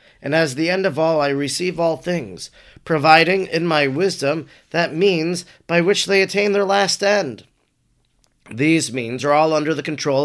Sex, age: male, 30-49